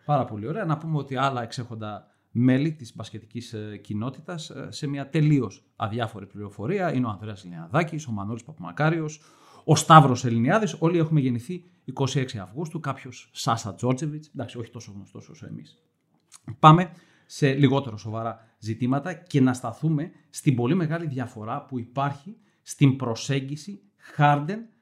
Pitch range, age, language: 125-170 Hz, 40-59, Greek